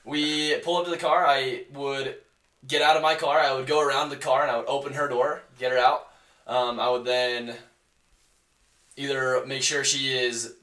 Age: 20-39